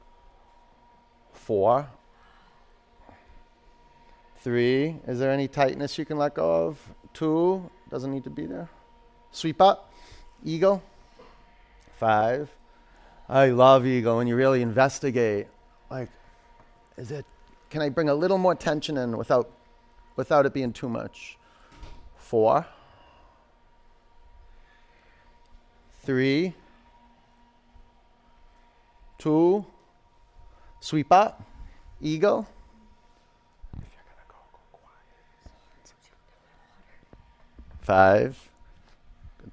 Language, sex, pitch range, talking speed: English, male, 115-155 Hz, 80 wpm